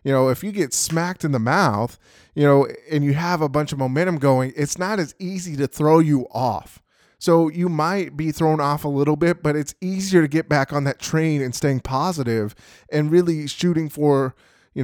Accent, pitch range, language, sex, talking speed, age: American, 135-165 Hz, English, male, 215 wpm, 20-39